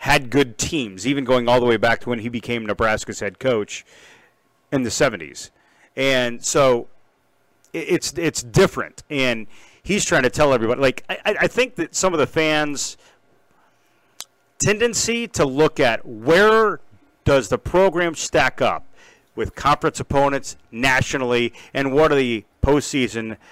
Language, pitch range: English, 125-170 Hz